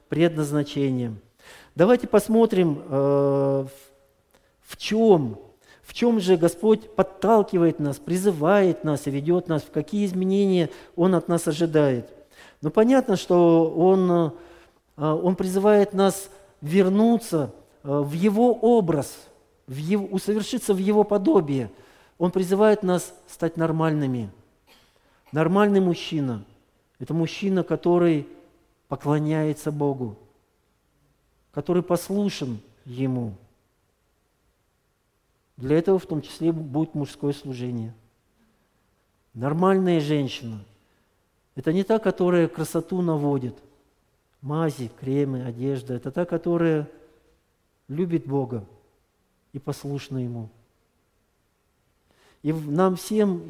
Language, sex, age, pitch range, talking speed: Russian, male, 40-59, 135-185 Hz, 95 wpm